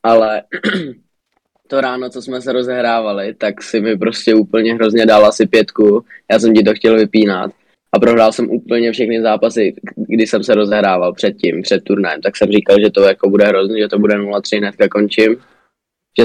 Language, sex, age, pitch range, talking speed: Slovak, male, 20-39, 105-110 Hz, 190 wpm